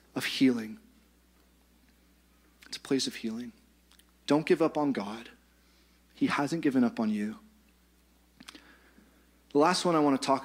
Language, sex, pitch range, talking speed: English, male, 110-135 Hz, 145 wpm